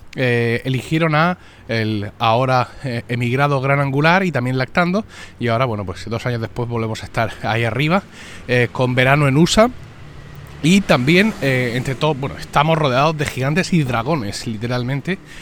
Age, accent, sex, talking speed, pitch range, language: 30-49, Spanish, male, 160 wpm, 115-165 Hz, Spanish